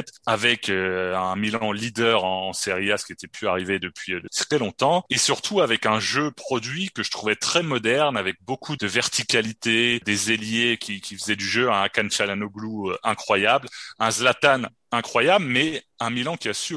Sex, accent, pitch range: male, French, 105-130 Hz